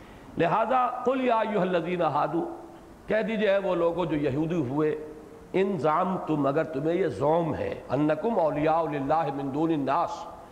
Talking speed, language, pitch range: 130 wpm, Urdu, 155-230 Hz